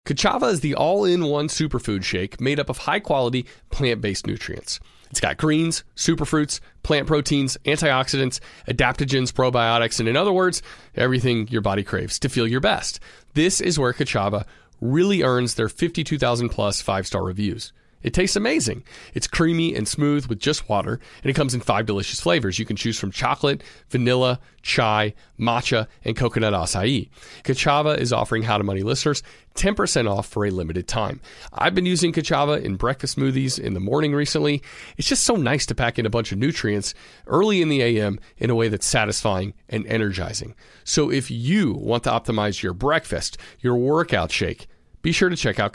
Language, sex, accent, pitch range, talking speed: English, male, American, 110-150 Hz, 175 wpm